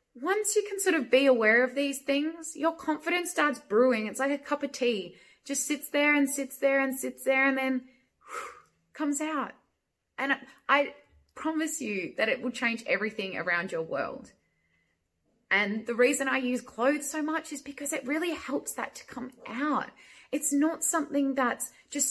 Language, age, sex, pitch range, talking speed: English, 20-39, female, 250-315 Hz, 180 wpm